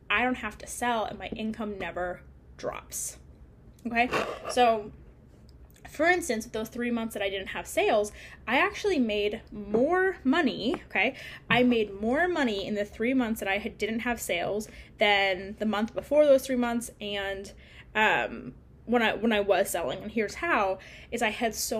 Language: English